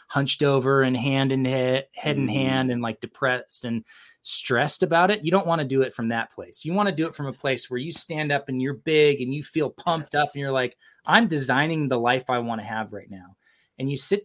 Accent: American